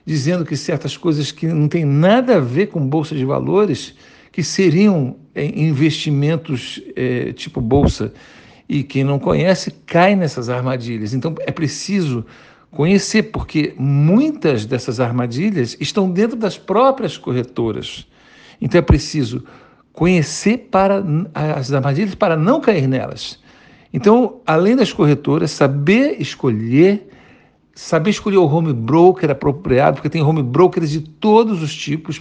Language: Portuguese